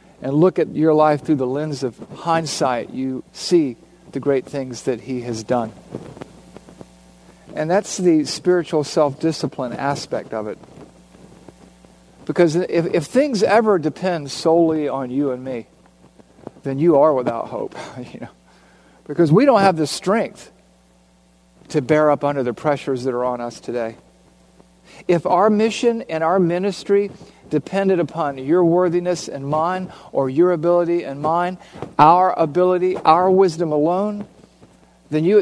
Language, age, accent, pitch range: English, 50-69, American, 140-190 Hz